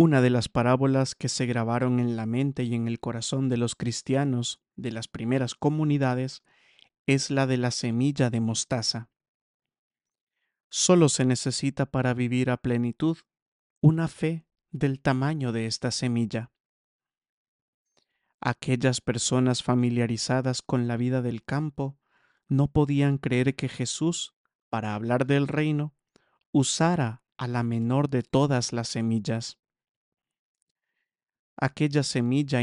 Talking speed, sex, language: 125 wpm, male, English